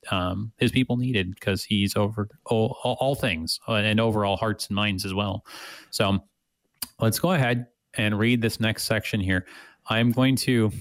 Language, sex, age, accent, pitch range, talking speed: English, male, 30-49, American, 95-120 Hz, 185 wpm